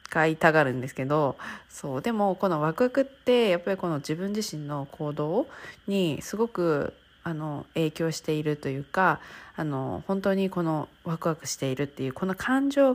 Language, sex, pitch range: Japanese, female, 145-185 Hz